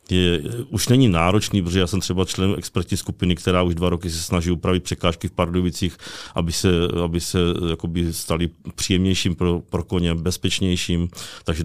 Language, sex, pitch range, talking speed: Czech, male, 85-90 Hz, 160 wpm